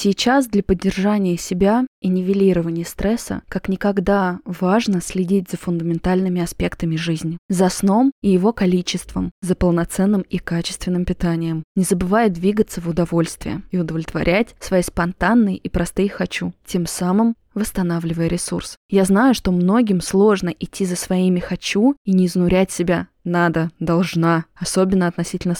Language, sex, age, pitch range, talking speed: Russian, female, 20-39, 175-200 Hz, 135 wpm